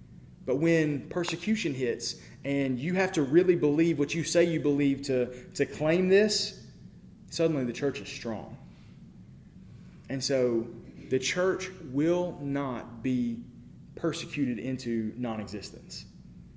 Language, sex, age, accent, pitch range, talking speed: English, male, 30-49, American, 120-170 Hz, 125 wpm